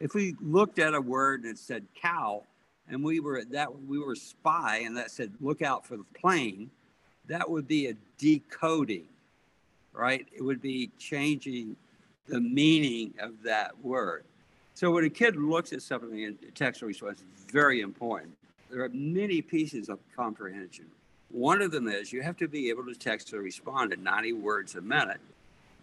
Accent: American